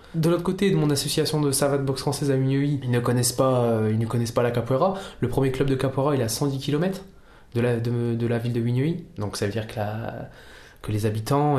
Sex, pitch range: male, 115-145 Hz